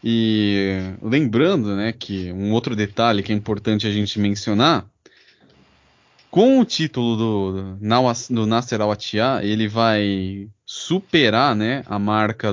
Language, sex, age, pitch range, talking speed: Portuguese, male, 20-39, 105-130 Hz, 130 wpm